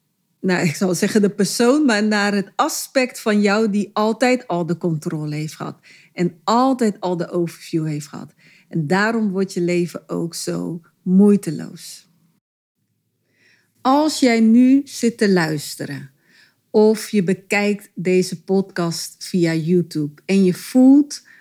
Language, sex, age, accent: Dutch, female, 40-59, Dutch